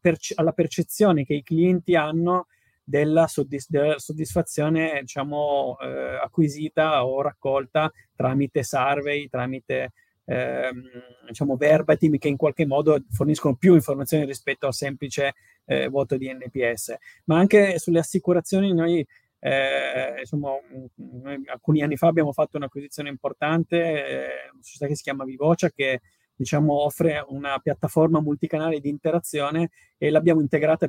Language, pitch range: Italian, 135-160 Hz